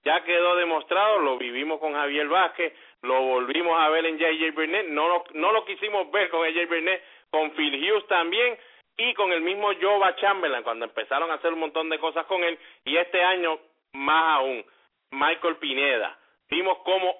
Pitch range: 155-185 Hz